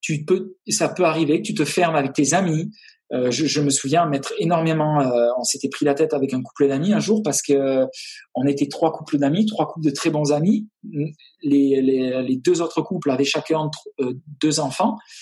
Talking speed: 220 wpm